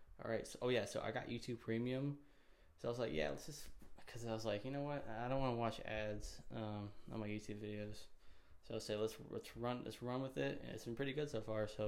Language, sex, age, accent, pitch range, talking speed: English, male, 10-29, American, 105-115 Hz, 275 wpm